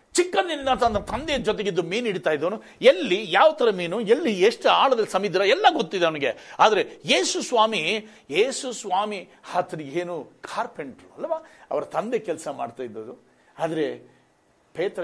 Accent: native